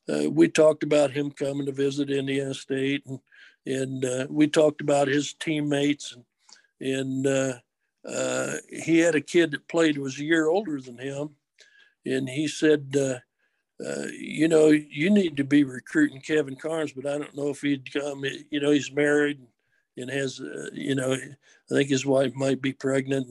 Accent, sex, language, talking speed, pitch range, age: American, male, English, 185 wpm, 135-155 Hz, 60-79